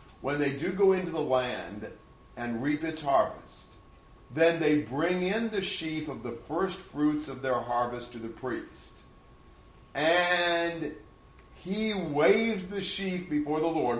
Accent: American